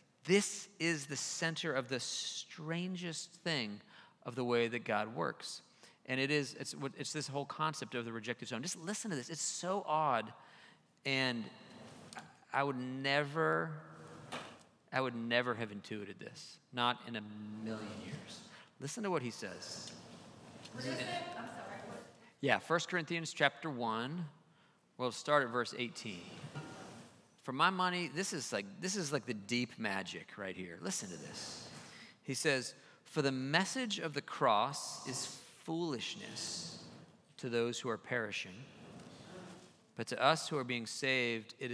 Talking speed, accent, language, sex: 150 wpm, American, English, male